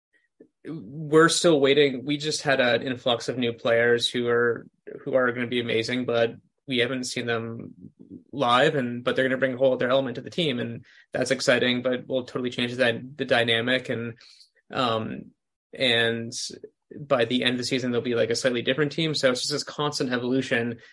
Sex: male